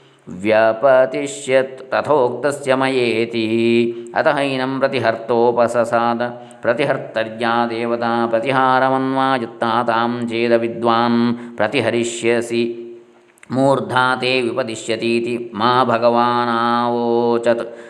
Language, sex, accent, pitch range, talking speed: Kannada, male, native, 115-130 Hz, 50 wpm